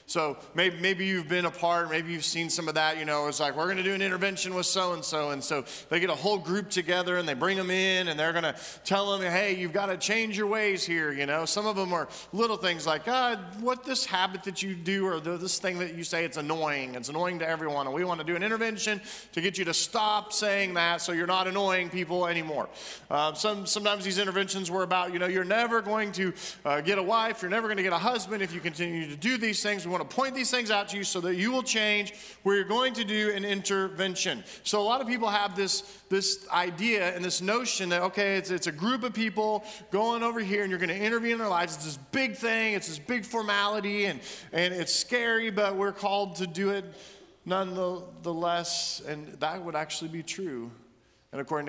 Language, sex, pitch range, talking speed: English, male, 170-210 Hz, 245 wpm